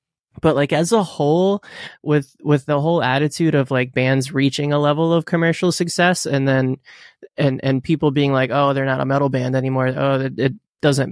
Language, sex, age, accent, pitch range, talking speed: English, male, 20-39, American, 130-160 Hz, 200 wpm